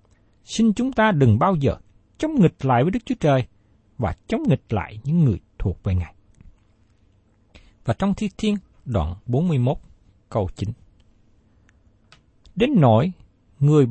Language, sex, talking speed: Vietnamese, male, 140 wpm